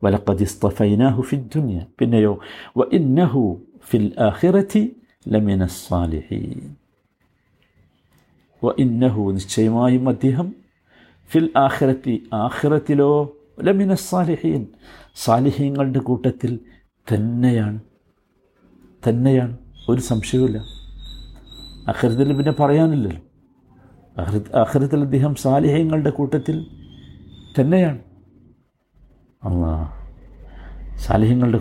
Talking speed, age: 80 wpm, 50-69